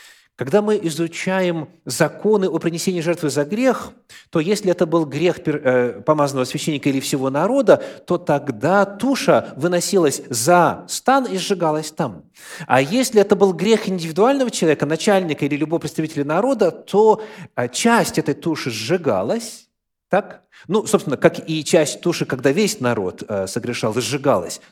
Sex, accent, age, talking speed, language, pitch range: male, native, 30-49, 140 wpm, Russian, 150-210 Hz